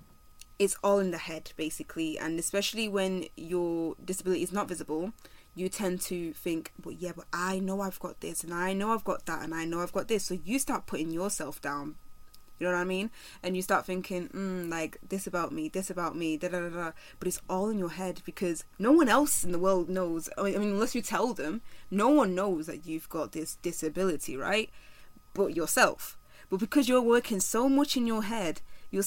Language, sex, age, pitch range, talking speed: English, female, 20-39, 170-205 Hz, 225 wpm